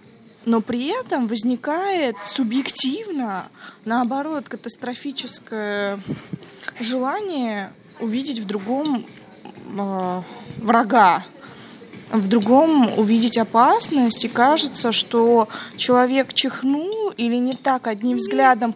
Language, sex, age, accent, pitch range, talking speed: Russian, female, 20-39, native, 225-280 Hz, 85 wpm